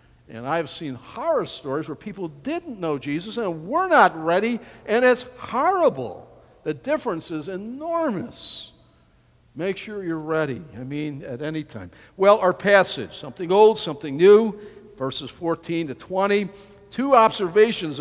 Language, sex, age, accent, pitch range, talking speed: English, male, 50-69, American, 135-200 Hz, 145 wpm